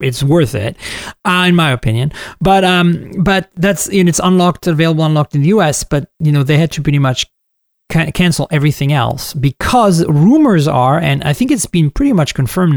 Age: 30-49